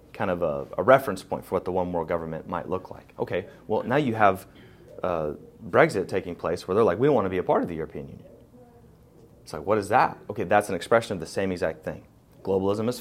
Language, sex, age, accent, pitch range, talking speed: English, male, 30-49, American, 95-115 Hz, 245 wpm